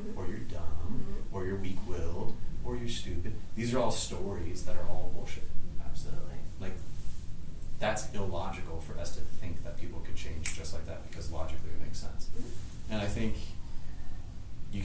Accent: American